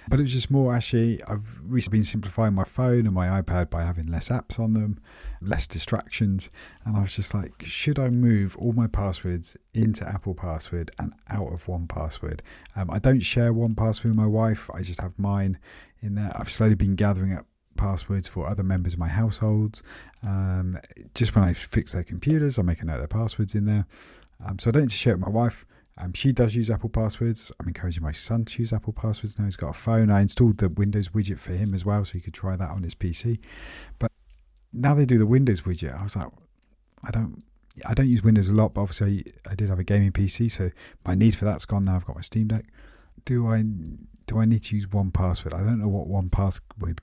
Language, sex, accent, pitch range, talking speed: English, male, British, 90-110 Hz, 230 wpm